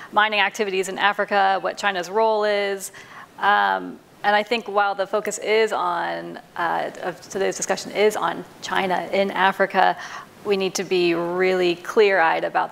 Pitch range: 180-210 Hz